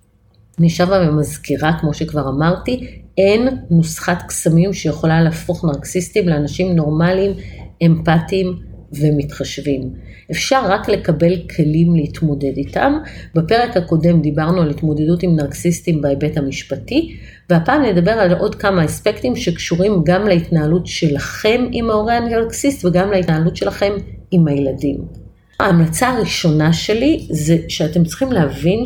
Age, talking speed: 30-49, 115 wpm